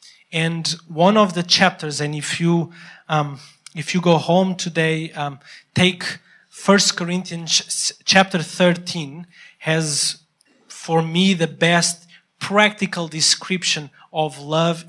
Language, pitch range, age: English, 155-185 Hz, 30-49